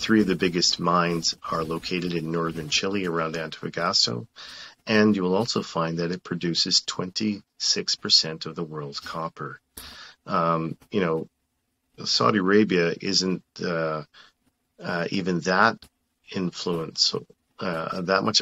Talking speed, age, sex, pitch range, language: 130 wpm, 40-59, male, 80-95 Hz, English